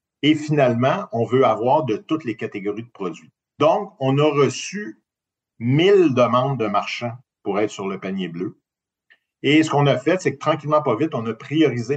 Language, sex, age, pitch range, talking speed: French, male, 50-69, 105-140 Hz, 190 wpm